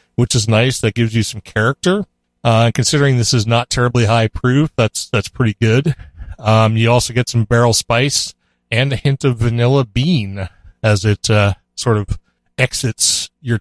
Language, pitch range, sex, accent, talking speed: English, 110-140 Hz, male, American, 175 wpm